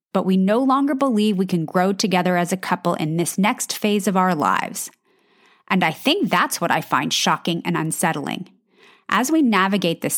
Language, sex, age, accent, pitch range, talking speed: English, female, 30-49, American, 180-245 Hz, 195 wpm